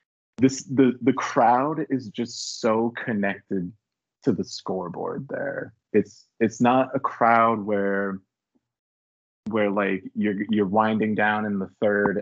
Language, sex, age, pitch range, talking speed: English, male, 20-39, 95-120 Hz, 135 wpm